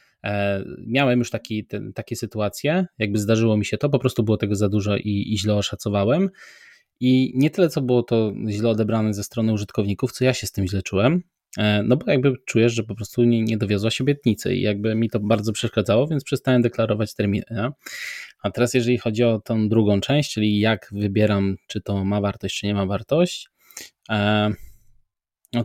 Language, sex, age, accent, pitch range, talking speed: Polish, male, 20-39, native, 105-125 Hz, 195 wpm